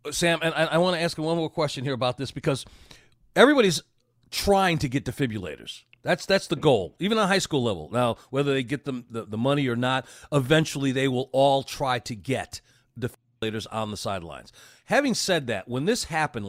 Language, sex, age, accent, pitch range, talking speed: English, male, 40-59, American, 120-165 Hz, 195 wpm